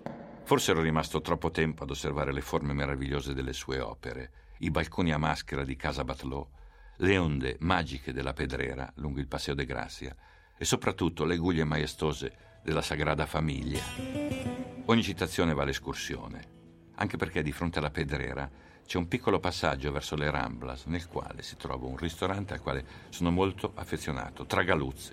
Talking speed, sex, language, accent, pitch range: 160 wpm, male, Italian, native, 75-90 Hz